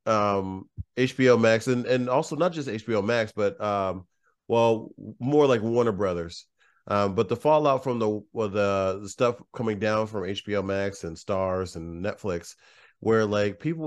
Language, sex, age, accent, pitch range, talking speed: English, male, 40-59, American, 100-125 Hz, 170 wpm